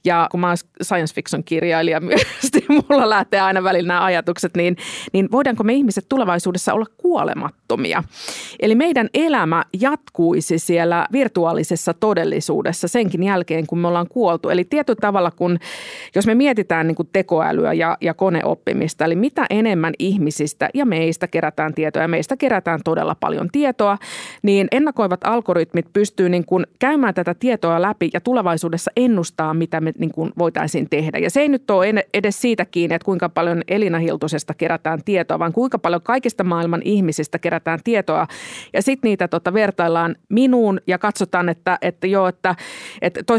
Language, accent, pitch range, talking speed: Finnish, native, 165-215 Hz, 160 wpm